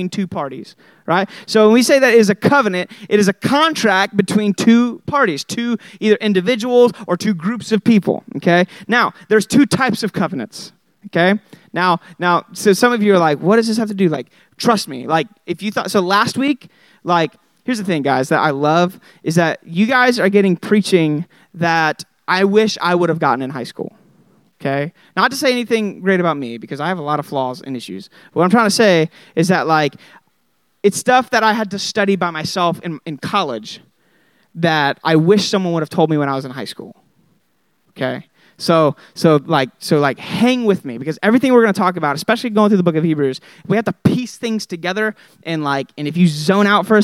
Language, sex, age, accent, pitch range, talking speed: English, male, 30-49, American, 165-215 Hz, 220 wpm